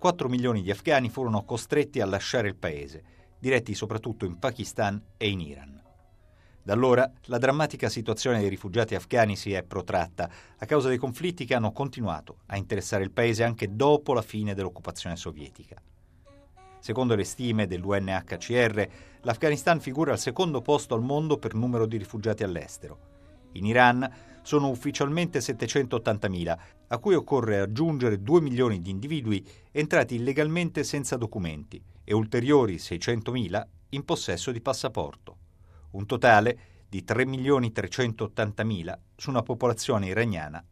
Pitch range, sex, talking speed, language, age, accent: 95-125 Hz, male, 135 wpm, Italian, 50-69, native